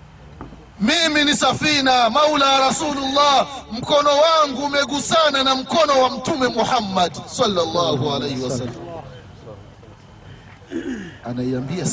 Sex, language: male, Swahili